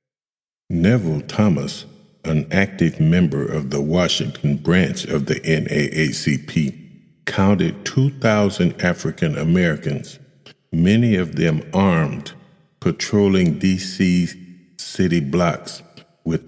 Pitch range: 80-100 Hz